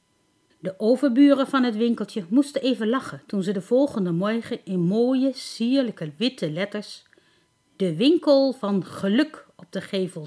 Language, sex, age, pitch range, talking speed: Dutch, female, 50-69, 180-270 Hz, 145 wpm